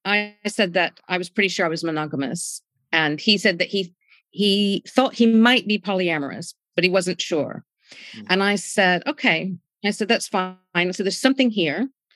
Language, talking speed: English, 185 wpm